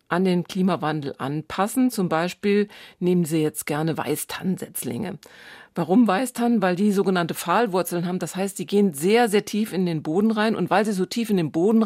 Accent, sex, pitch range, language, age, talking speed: German, female, 165-195 Hz, German, 40-59, 185 wpm